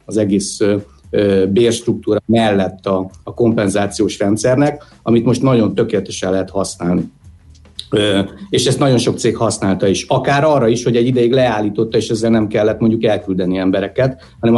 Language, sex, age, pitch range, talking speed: Hungarian, male, 60-79, 100-120 Hz, 145 wpm